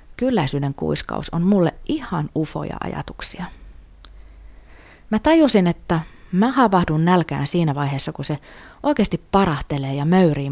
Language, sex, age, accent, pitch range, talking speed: Finnish, female, 30-49, native, 140-180 Hz, 120 wpm